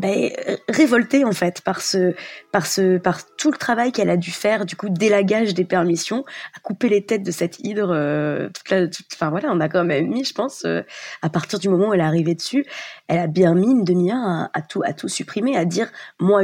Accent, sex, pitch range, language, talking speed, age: French, female, 175-225 Hz, French, 230 wpm, 20-39